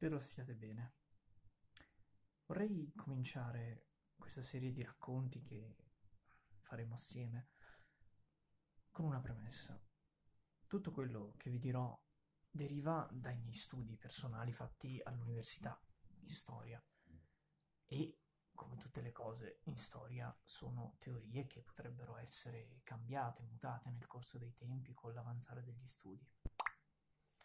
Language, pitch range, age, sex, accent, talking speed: Italian, 115-135 Hz, 20-39, male, native, 110 wpm